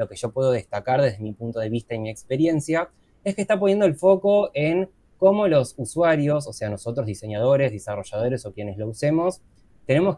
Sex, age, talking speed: male, 20-39, 195 wpm